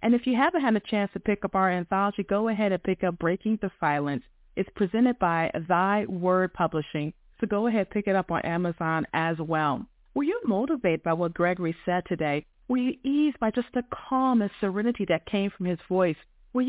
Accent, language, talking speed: American, English, 215 wpm